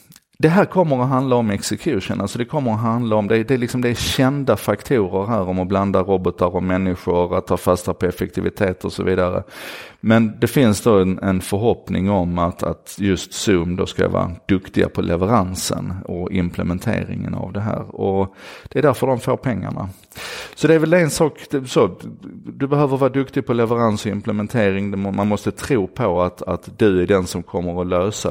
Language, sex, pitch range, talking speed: Swedish, male, 90-120 Hz, 195 wpm